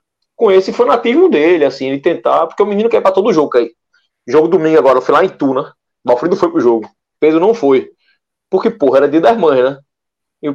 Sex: male